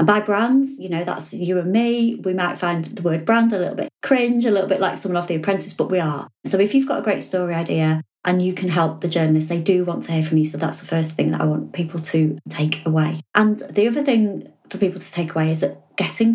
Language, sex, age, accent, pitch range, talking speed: English, female, 30-49, British, 160-205 Hz, 275 wpm